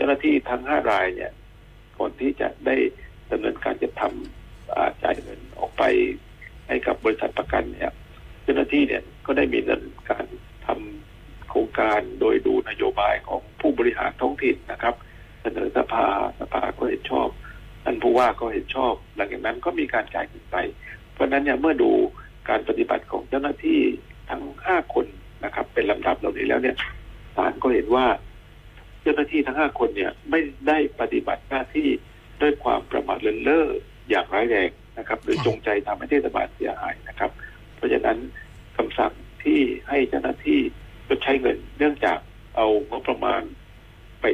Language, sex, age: Thai, male, 60-79